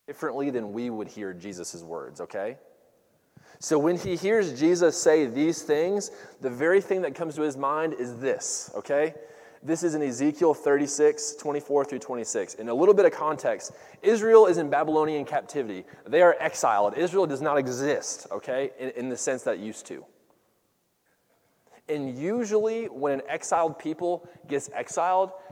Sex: male